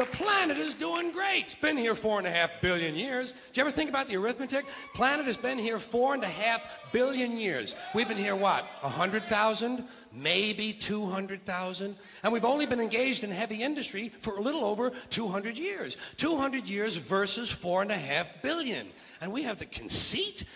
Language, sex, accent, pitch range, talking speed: English, male, American, 165-235 Hz, 190 wpm